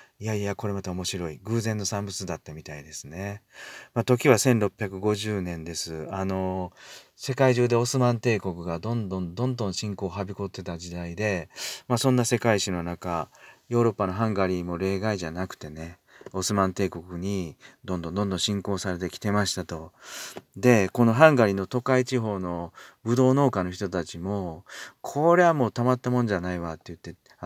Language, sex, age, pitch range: Japanese, male, 40-59, 90-120 Hz